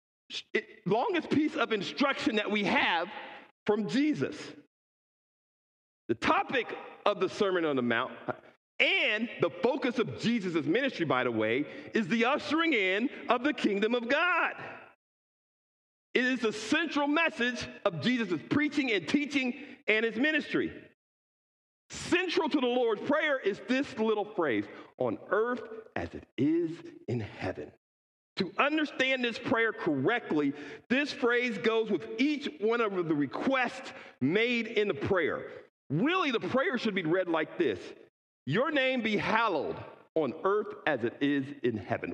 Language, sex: English, male